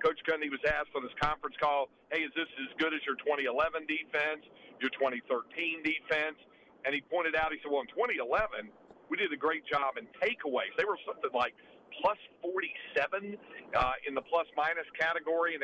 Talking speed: 185 wpm